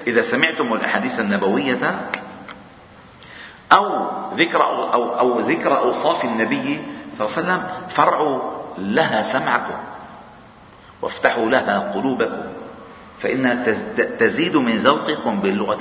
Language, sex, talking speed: Arabic, male, 100 wpm